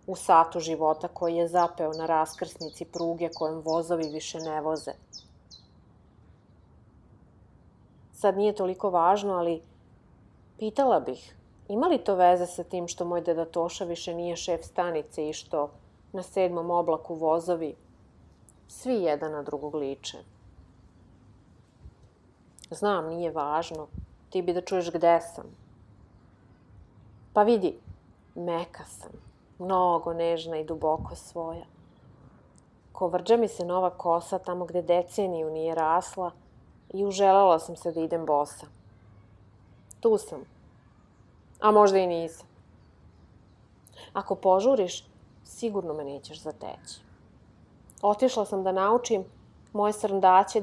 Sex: female